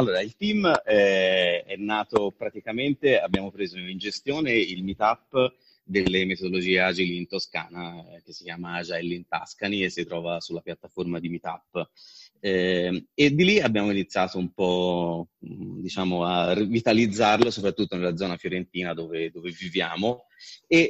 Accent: native